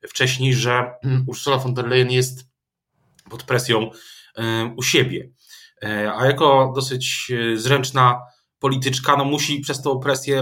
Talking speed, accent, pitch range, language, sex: 120 wpm, native, 125-150 Hz, Polish, male